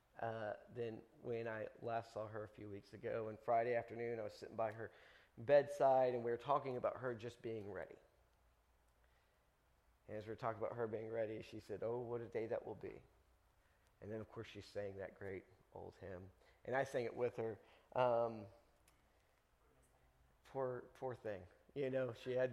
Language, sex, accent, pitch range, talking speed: English, male, American, 95-130 Hz, 190 wpm